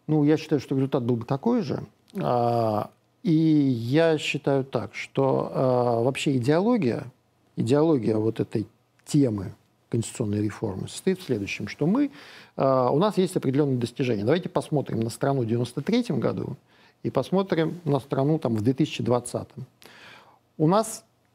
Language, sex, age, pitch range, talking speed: Russian, male, 50-69, 125-170 Hz, 135 wpm